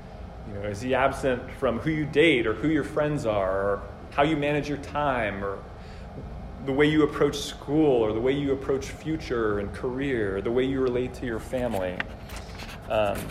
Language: English